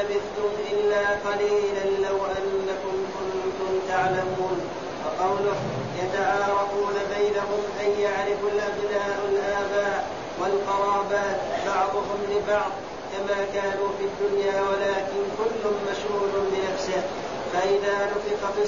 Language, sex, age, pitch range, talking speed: Arabic, male, 30-49, 195-205 Hz, 95 wpm